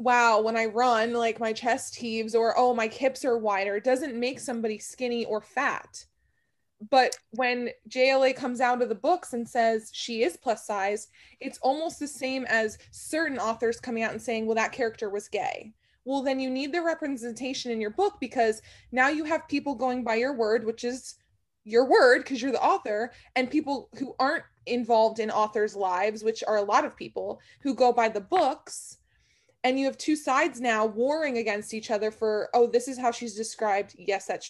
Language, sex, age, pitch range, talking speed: English, female, 20-39, 220-260 Hz, 200 wpm